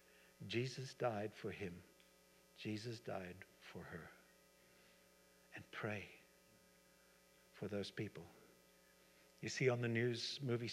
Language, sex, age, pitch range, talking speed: English, male, 60-79, 100-145 Hz, 105 wpm